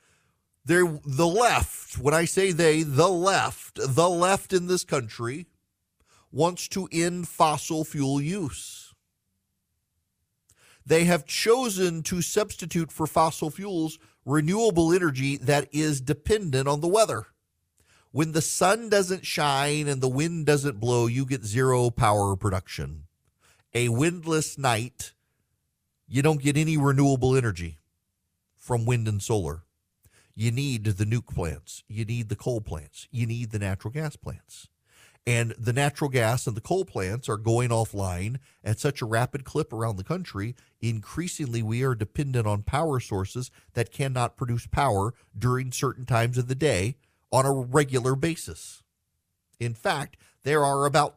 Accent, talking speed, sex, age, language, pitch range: American, 145 wpm, male, 40-59, English, 110-155 Hz